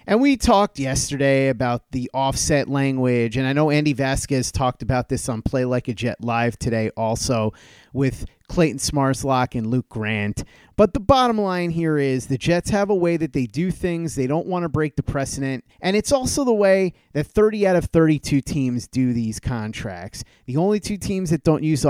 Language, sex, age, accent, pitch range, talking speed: English, male, 30-49, American, 125-165 Hz, 200 wpm